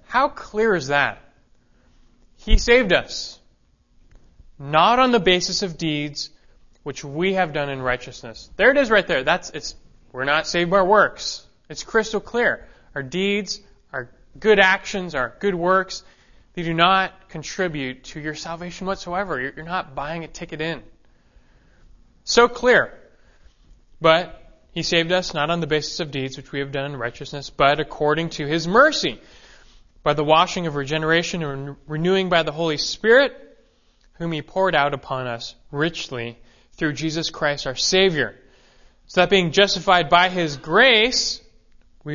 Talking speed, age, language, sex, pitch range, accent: 160 wpm, 30-49, English, male, 140-185 Hz, American